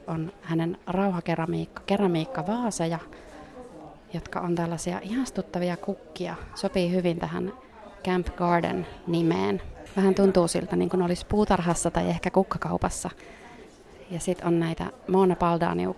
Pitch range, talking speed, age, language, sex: 170-200 Hz, 115 wpm, 30-49, Finnish, female